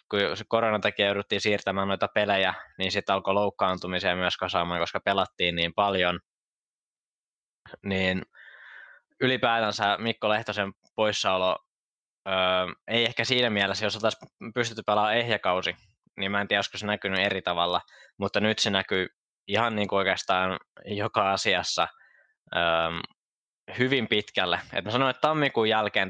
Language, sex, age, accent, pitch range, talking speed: Finnish, male, 20-39, native, 90-105 Hz, 140 wpm